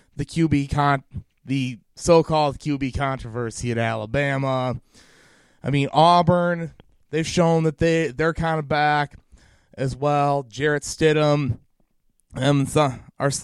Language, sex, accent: English, male, American